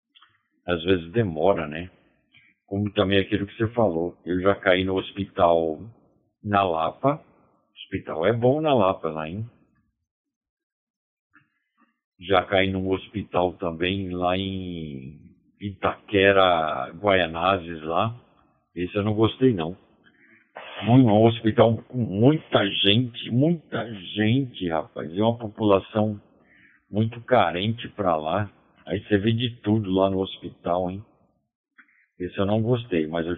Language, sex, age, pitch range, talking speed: Portuguese, male, 60-79, 90-110 Hz, 125 wpm